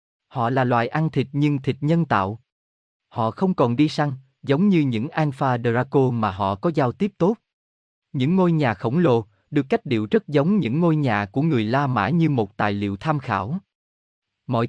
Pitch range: 110-160 Hz